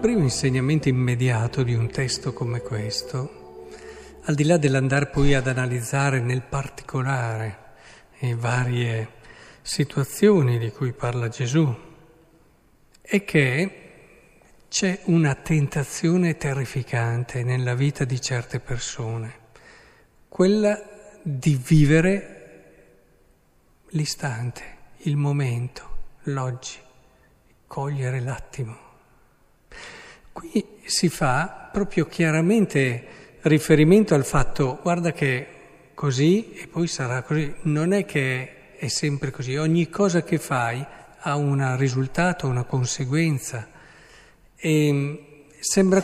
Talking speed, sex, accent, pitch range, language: 100 wpm, male, native, 125-165 Hz, Italian